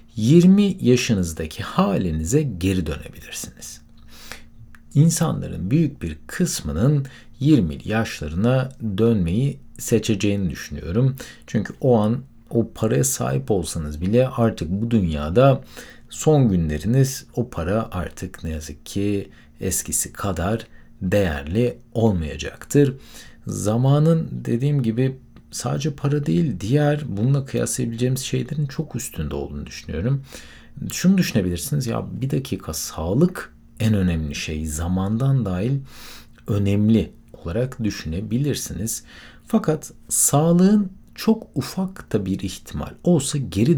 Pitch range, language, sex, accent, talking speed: 90-135 Hz, Turkish, male, native, 100 wpm